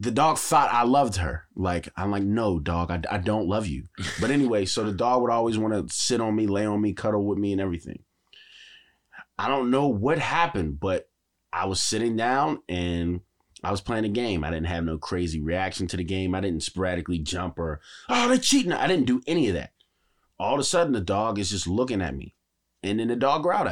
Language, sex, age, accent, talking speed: English, male, 30-49, American, 230 wpm